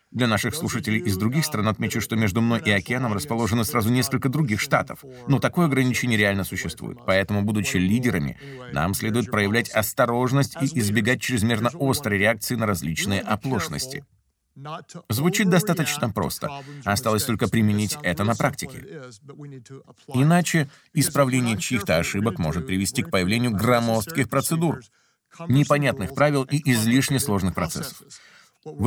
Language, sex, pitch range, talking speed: Russian, male, 105-145 Hz, 130 wpm